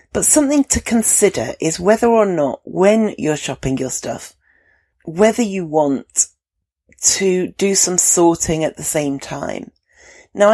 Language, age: English, 40-59